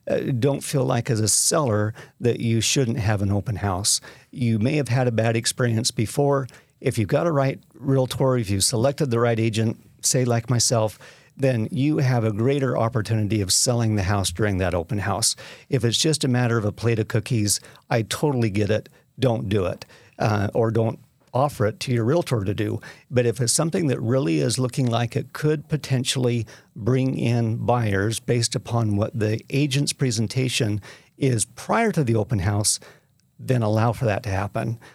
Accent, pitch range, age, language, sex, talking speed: American, 110-135 Hz, 50-69, English, male, 190 wpm